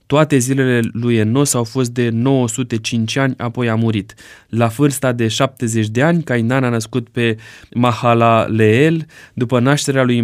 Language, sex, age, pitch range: Romanian, male, 20-39, 115-135 Hz